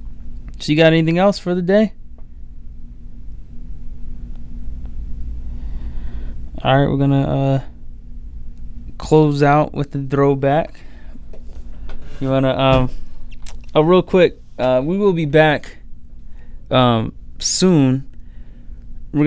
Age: 20-39